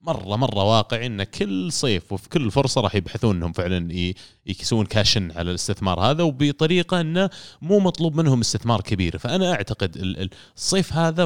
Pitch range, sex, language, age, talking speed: 100-135 Hz, male, Arabic, 30-49, 160 wpm